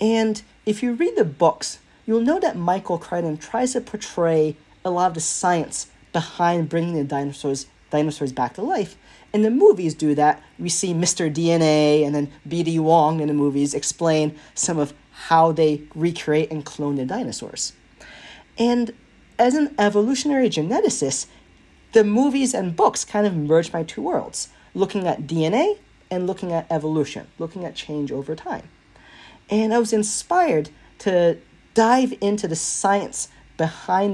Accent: American